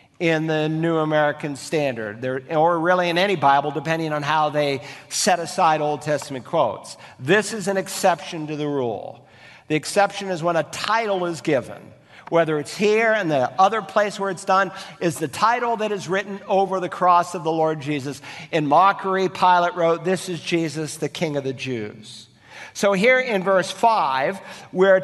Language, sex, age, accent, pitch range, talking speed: English, male, 50-69, American, 150-185 Hz, 180 wpm